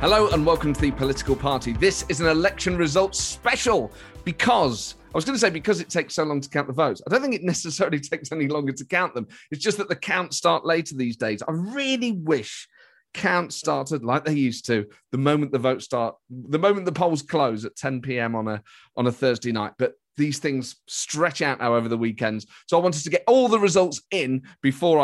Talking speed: 225 wpm